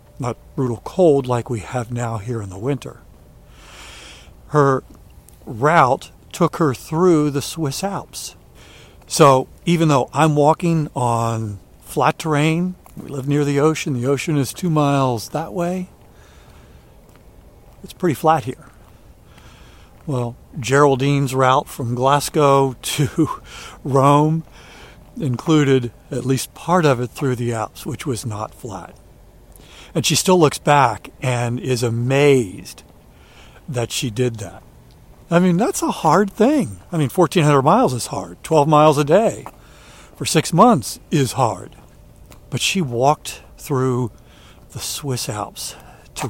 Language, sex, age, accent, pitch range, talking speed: English, male, 60-79, American, 125-155 Hz, 135 wpm